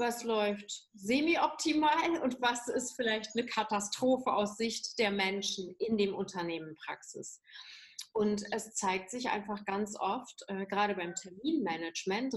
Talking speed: 130 wpm